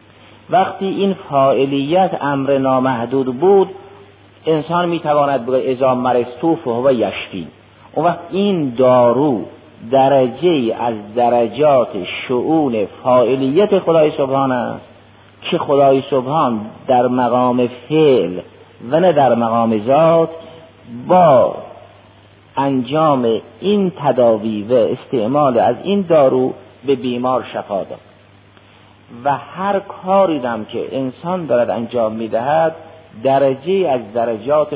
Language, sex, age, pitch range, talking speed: Persian, male, 50-69, 115-155 Hz, 100 wpm